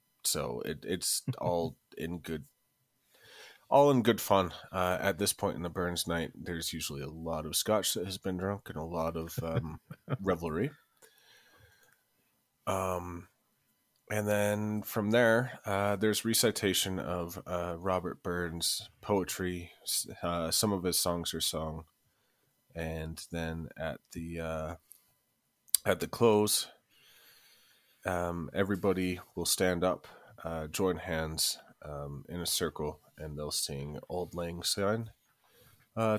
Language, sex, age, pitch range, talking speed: English, male, 30-49, 80-100 Hz, 135 wpm